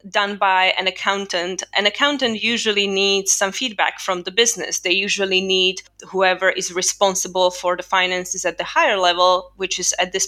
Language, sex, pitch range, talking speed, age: English, female, 180-200 Hz, 175 wpm, 20-39